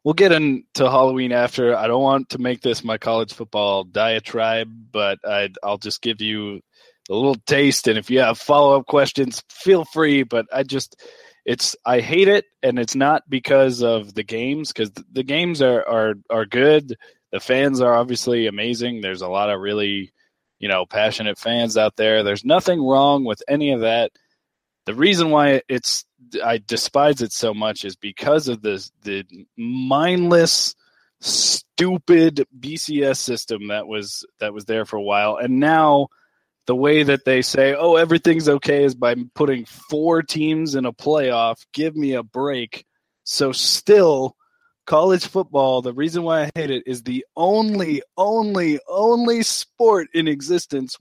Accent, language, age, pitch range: American, English, 20-39, 115-155 Hz